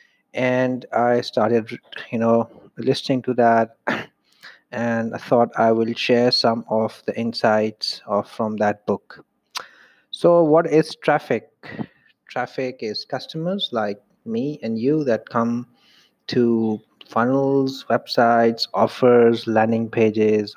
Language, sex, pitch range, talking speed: English, male, 115-125 Hz, 115 wpm